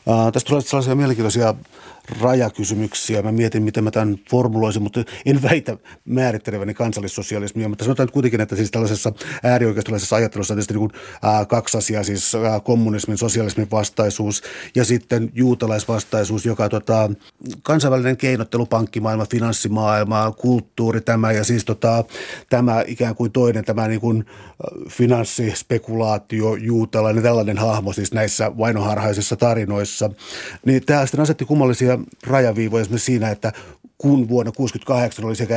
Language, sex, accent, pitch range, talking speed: Finnish, male, native, 110-125 Hz, 135 wpm